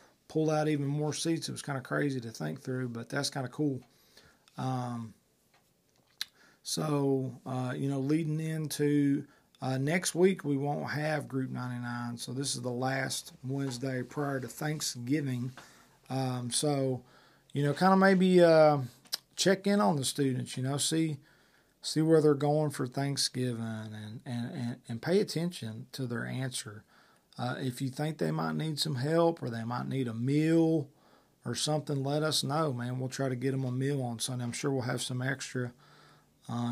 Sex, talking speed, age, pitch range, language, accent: male, 180 wpm, 40-59, 125-145 Hz, English, American